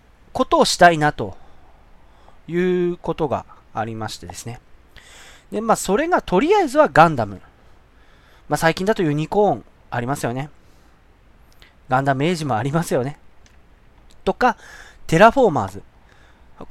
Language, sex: Japanese, male